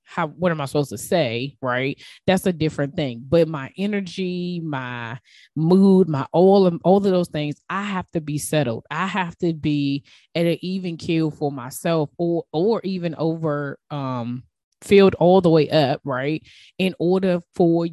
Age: 20-39